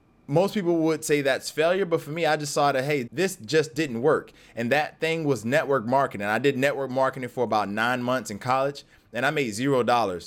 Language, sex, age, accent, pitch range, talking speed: English, male, 20-39, American, 115-145 Hz, 230 wpm